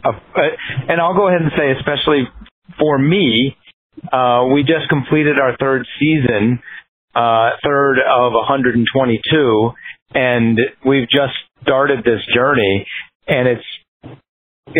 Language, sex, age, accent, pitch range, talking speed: English, male, 50-69, American, 110-135 Hz, 120 wpm